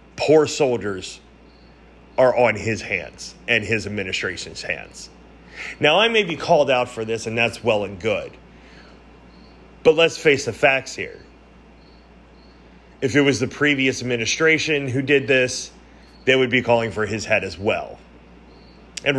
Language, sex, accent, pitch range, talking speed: English, male, American, 100-140 Hz, 150 wpm